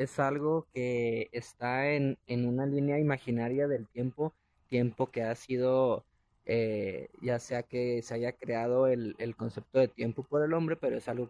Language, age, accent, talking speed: Spanish, 20-39, Mexican, 175 wpm